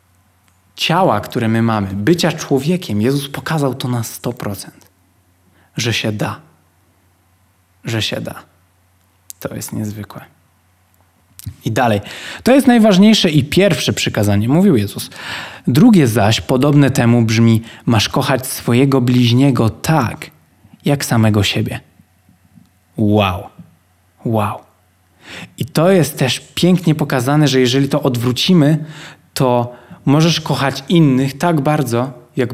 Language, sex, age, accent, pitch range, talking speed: Polish, male, 20-39, native, 110-160 Hz, 115 wpm